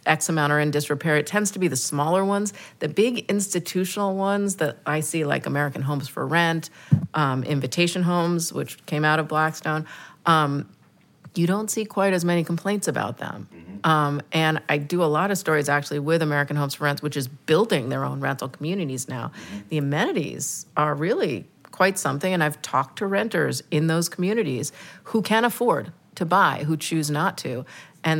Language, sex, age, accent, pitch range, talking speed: English, female, 40-59, American, 150-190 Hz, 185 wpm